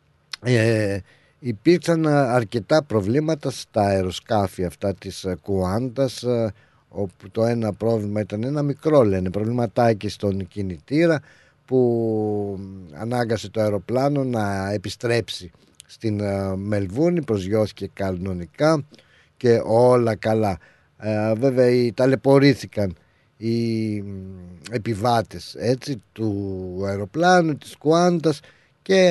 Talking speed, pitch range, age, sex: 85 wpm, 105-145 Hz, 50-69, male